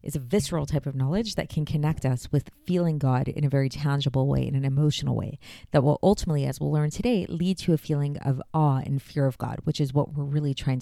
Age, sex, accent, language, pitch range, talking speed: 30-49, female, American, English, 135-165 Hz, 250 wpm